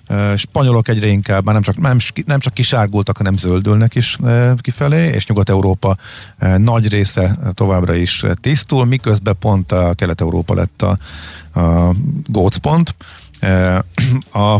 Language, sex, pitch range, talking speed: Hungarian, male, 90-120 Hz, 125 wpm